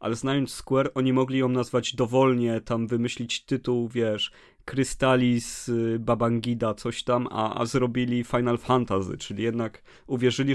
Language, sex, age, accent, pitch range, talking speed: Polish, male, 30-49, native, 105-130 Hz, 135 wpm